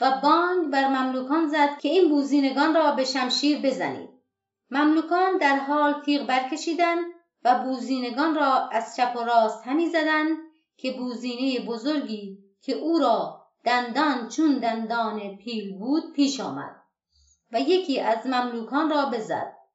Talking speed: 135 wpm